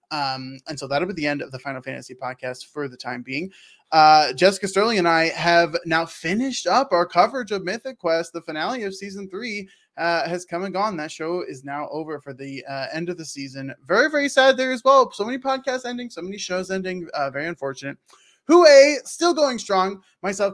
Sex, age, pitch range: male, 20-39, 155-220 Hz